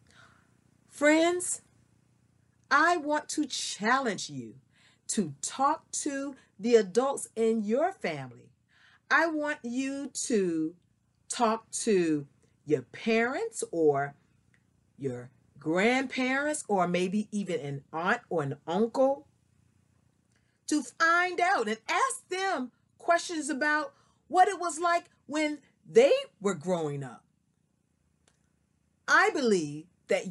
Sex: female